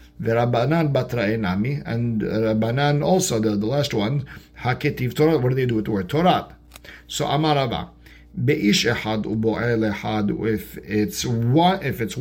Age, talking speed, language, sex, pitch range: 50-69, 105 wpm, English, male, 105-130 Hz